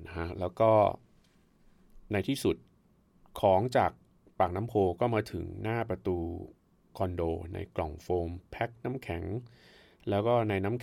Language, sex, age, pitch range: Thai, male, 30-49, 90-120 Hz